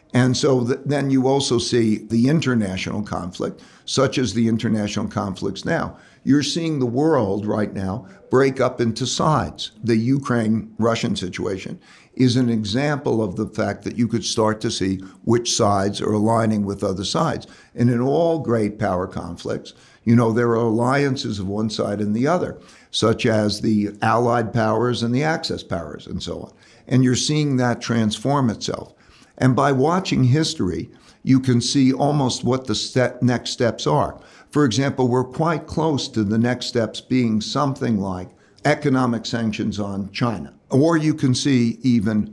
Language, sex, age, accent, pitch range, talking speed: English, male, 60-79, American, 110-130 Hz, 165 wpm